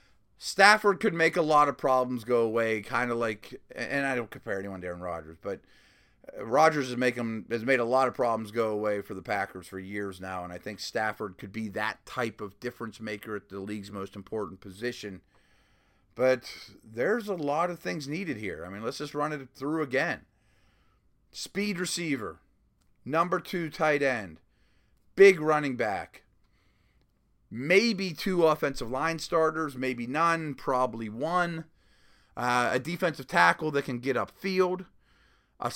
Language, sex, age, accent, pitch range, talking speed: English, male, 30-49, American, 110-160 Hz, 160 wpm